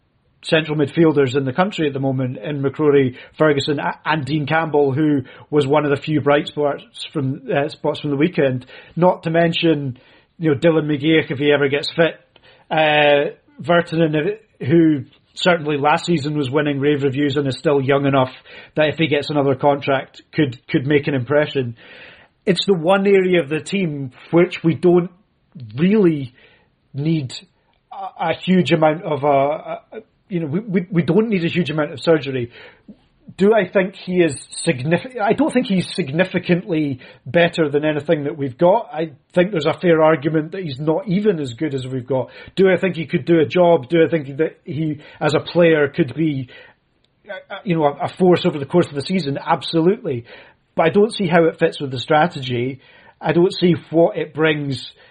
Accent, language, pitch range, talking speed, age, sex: British, English, 145-170 Hz, 190 wpm, 30-49, male